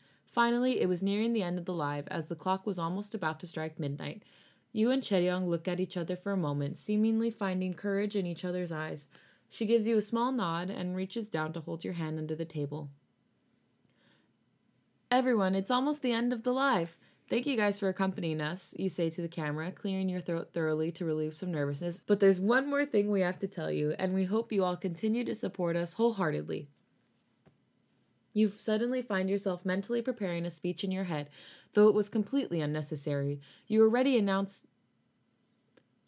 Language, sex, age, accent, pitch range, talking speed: English, female, 20-39, American, 170-215 Hz, 195 wpm